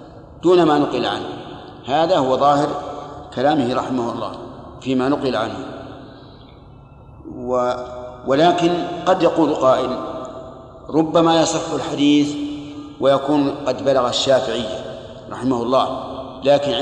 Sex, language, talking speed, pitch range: male, Arabic, 100 wpm, 130-150 Hz